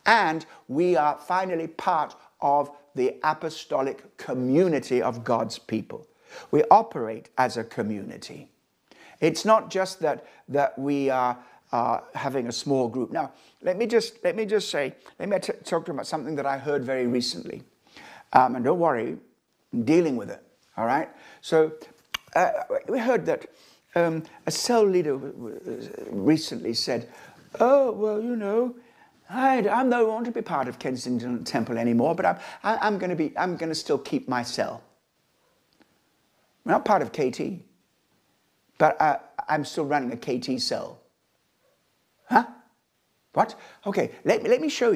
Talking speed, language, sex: 160 wpm, English, male